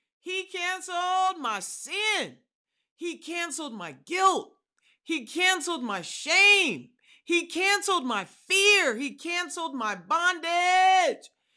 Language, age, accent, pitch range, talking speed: English, 40-59, American, 270-360 Hz, 105 wpm